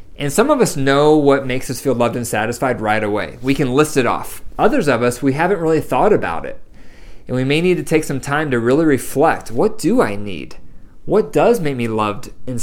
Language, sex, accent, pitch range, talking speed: English, male, American, 115-145 Hz, 235 wpm